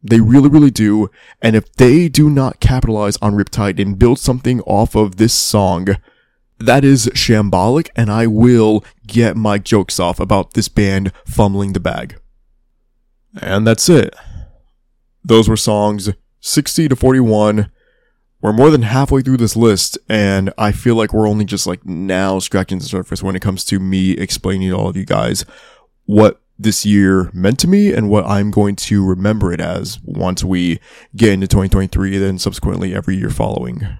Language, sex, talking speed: English, male, 175 wpm